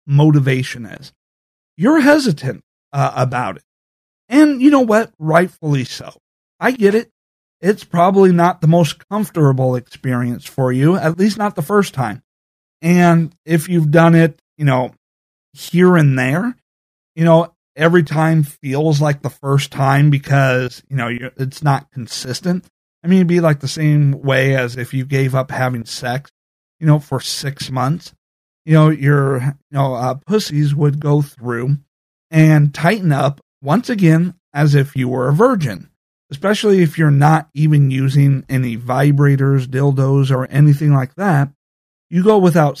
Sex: male